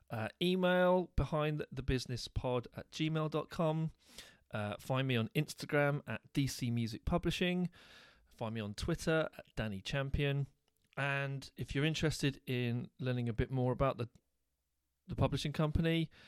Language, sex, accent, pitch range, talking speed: English, male, British, 120-155 Hz, 135 wpm